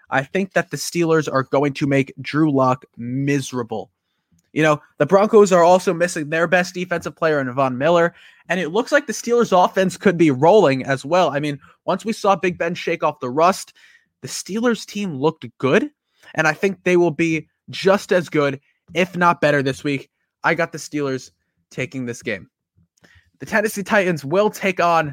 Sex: male